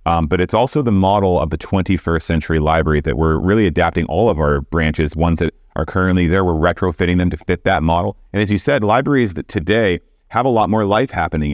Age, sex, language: 30-49, male, English